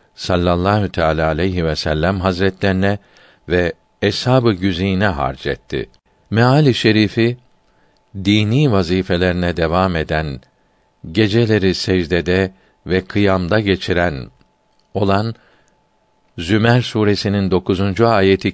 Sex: male